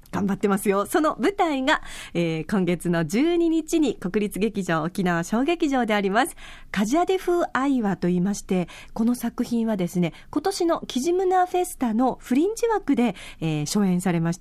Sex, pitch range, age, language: female, 180-260 Hz, 40-59, Japanese